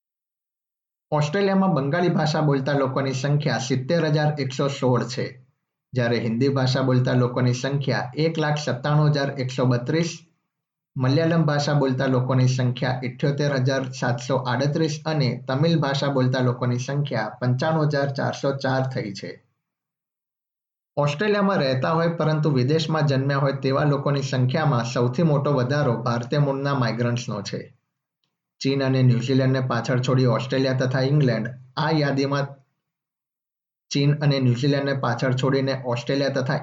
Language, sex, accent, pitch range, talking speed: Gujarati, male, native, 130-150 Hz, 90 wpm